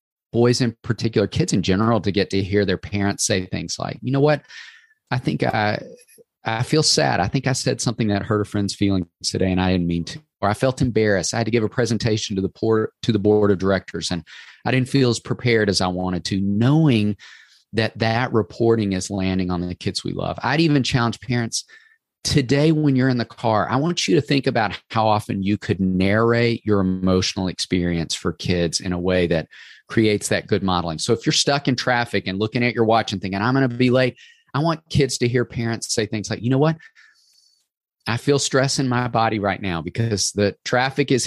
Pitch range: 95-125 Hz